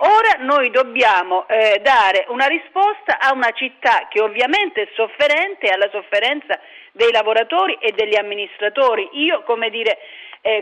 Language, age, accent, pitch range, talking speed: Italian, 40-59, native, 210-295 Hz, 140 wpm